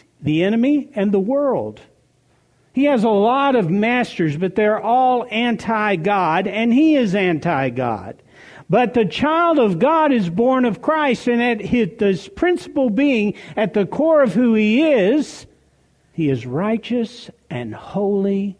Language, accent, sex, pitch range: English, American, male, 175-275 Hz